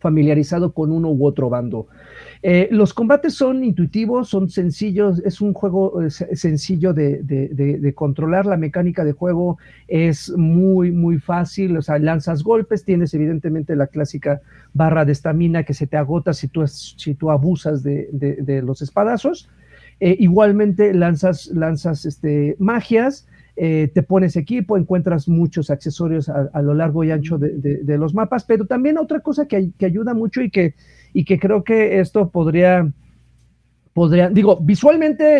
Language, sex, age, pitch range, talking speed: Spanish, male, 50-69, 150-195 Hz, 170 wpm